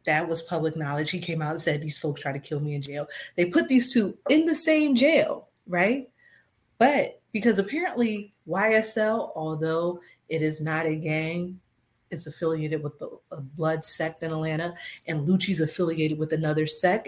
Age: 30-49